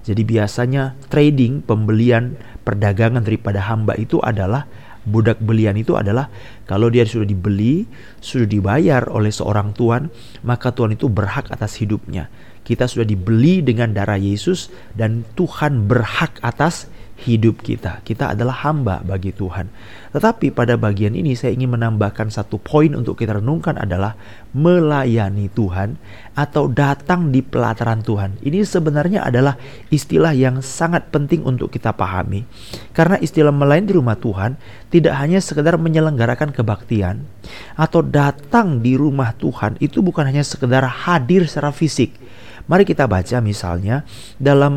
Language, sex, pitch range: Indonesian, male, 110-155 Hz